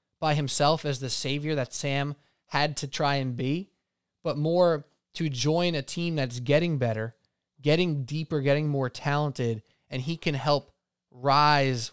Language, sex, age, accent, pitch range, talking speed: English, male, 20-39, American, 130-155 Hz, 155 wpm